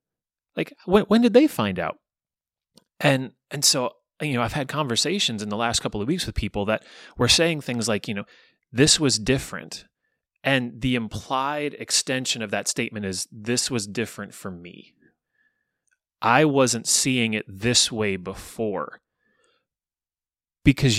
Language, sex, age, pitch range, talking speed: English, male, 30-49, 105-135 Hz, 150 wpm